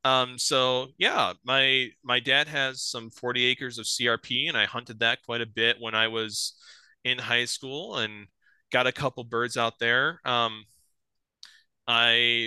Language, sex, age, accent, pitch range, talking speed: English, male, 20-39, American, 110-130 Hz, 165 wpm